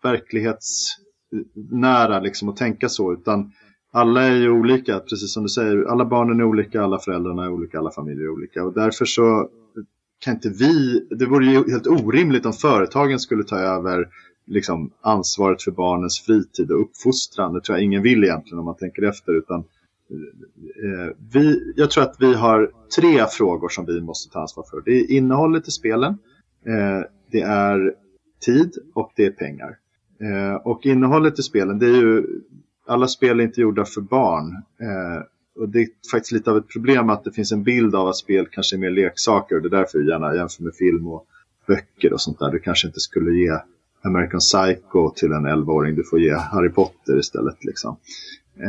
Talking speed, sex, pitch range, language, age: 190 wpm, male, 90-120 Hz, Swedish, 30-49